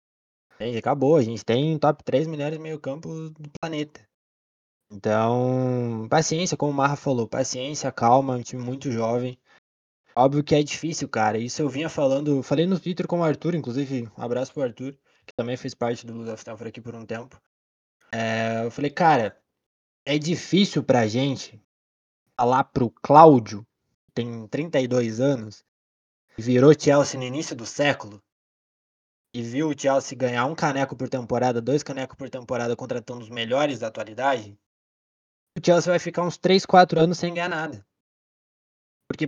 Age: 20-39